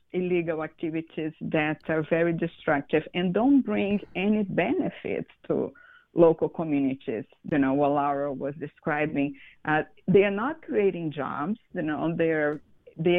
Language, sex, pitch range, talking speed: English, female, 165-210 Hz, 130 wpm